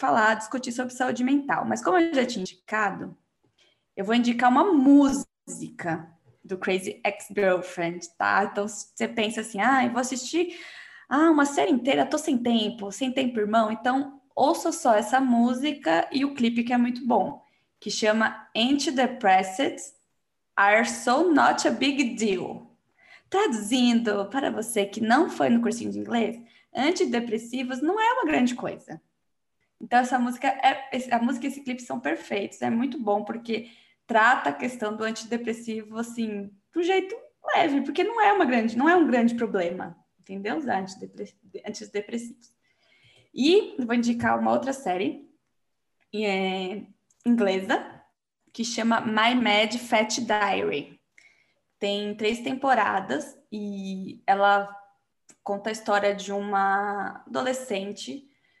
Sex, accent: female, Brazilian